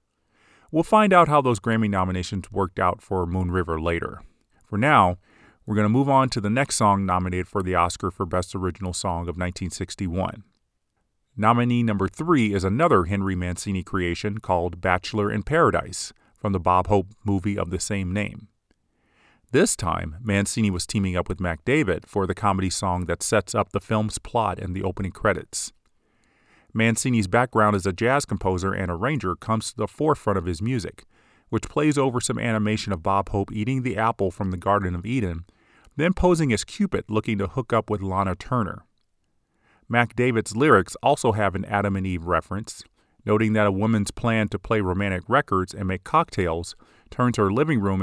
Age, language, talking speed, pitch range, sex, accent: 30-49, English, 180 wpm, 95-110 Hz, male, American